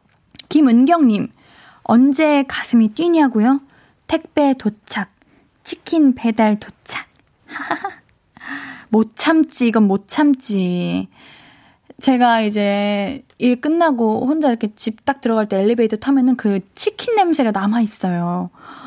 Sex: female